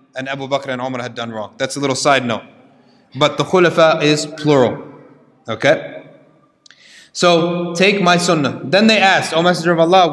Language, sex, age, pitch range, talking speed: English, male, 30-49, 150-225 Hz, 185 wpm